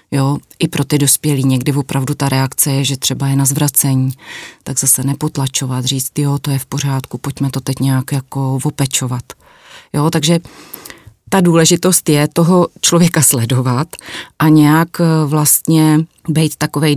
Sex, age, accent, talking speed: female, 30-49, native, 150 wpm